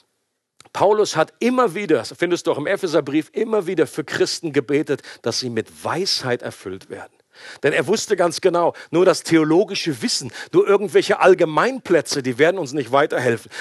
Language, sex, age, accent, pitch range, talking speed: German, male, 50-69, German, 170-260 Hz, 170 wpm